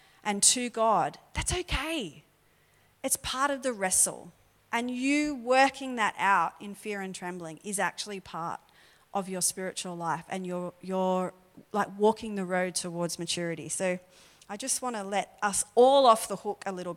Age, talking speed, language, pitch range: 40-59, 170 wpm, English, 180-230 Hz